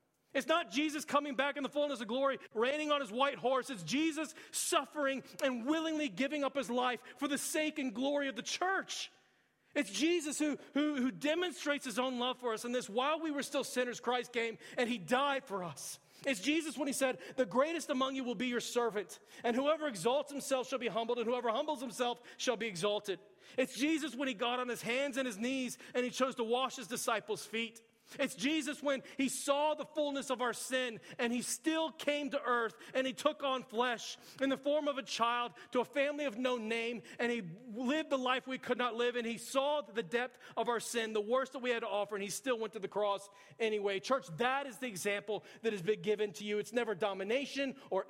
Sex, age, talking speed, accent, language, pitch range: male, 40-59, 230 wpm, American, English, 230-280 Hz